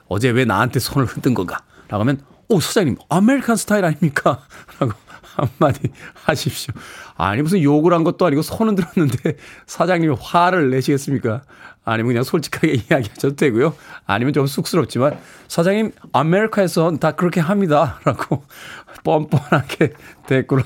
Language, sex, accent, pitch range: Korean, male, native, 130-185 Hz